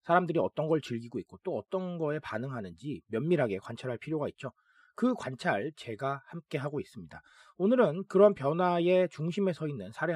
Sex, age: male, 40-59